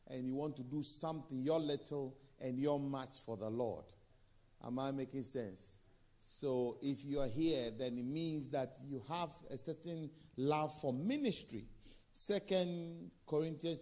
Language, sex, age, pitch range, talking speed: English, male, 50-69, 115-160 Hz, 155 wpm